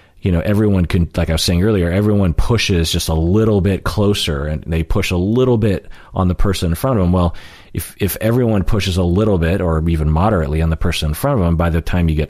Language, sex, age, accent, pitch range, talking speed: English, male, 40-59, American, 75-95 Hz, 255 wpm